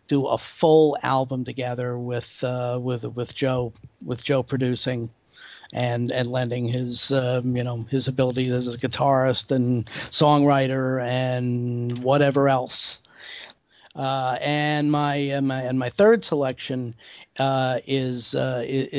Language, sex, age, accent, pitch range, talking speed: English, male, 50-69, American, 125-140 Hz, 125 wpm